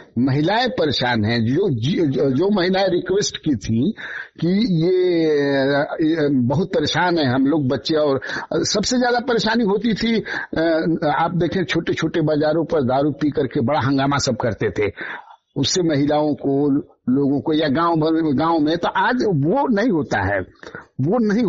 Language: Hindi